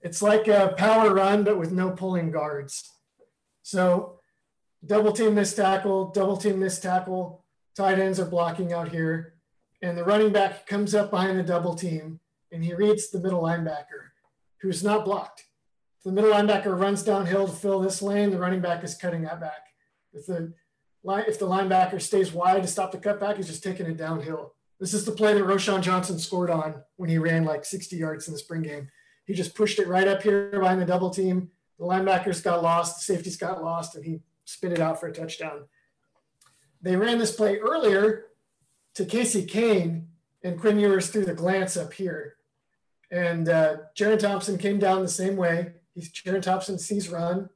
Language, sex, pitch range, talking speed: English, male, 170-200 Hz, 195 wpm